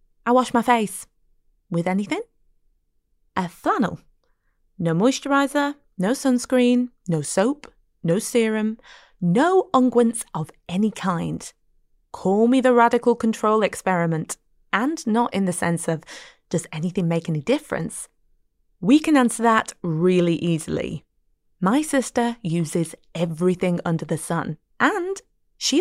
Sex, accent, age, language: female, British, 20-39, English